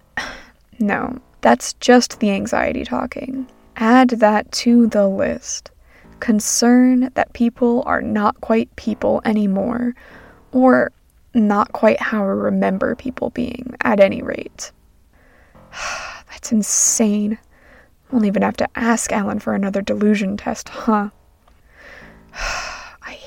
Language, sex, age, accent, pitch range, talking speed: English, female, 20-39, American, 215-265 Hz, 115 wpm